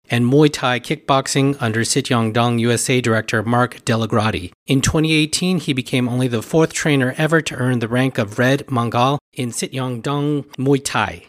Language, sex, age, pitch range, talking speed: English, male, 40-59, 120-150 Hz, 170 wpm